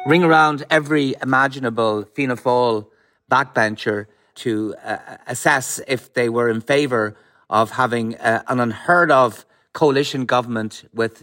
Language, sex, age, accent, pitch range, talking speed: English, male, 30-49, Irish, 105-125 Hz, 130 wpm